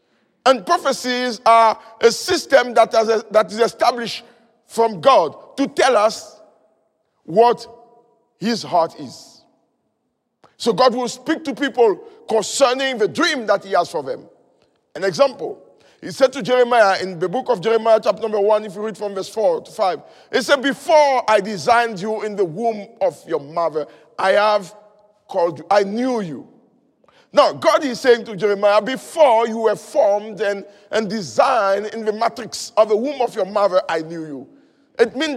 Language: English